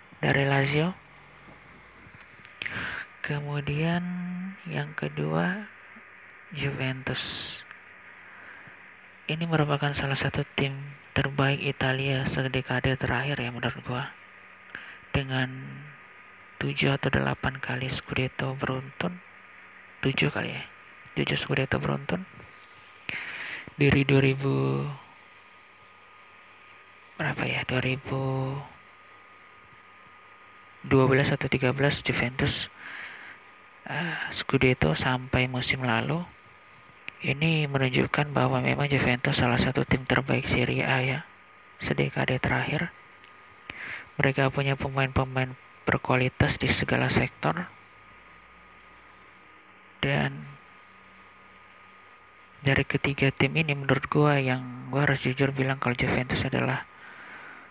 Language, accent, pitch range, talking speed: Indonesian, native, 125-140 Hz, 85 wpm